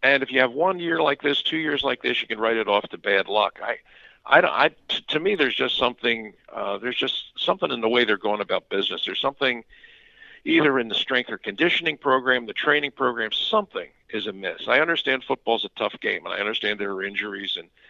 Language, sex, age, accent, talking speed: English, male, 50-69, American, 230 wpm